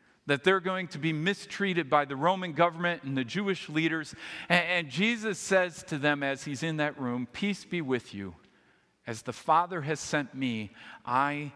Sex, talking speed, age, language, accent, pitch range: male, 185 wpm, 50-69, English, American, 120-170 Hz